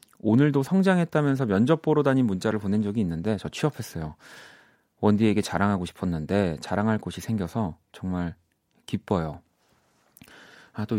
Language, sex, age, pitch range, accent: Korean, male, 30-49, 95-130 Hz, native